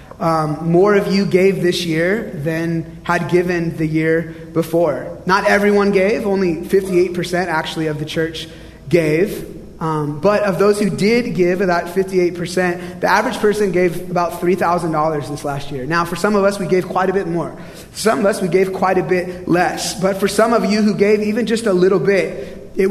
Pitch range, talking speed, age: 170-200 Hz, 195 wpm, 30-49